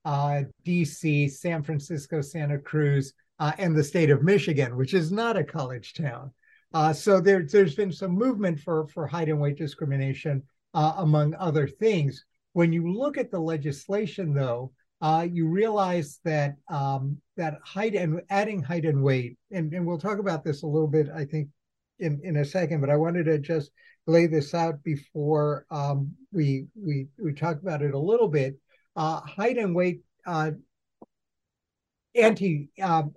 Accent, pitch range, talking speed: American, 145-175 Hz, 170 wpm